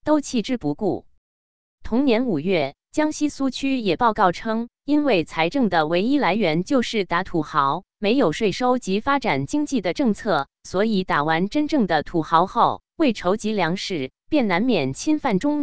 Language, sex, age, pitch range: Chinese, female, 20-39, 160-250 Hz